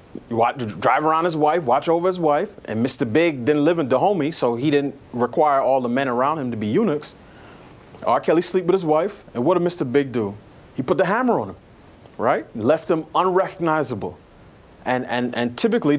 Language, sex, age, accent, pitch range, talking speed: English, male, 30-49, American, 120-155 Hz, 205 wpm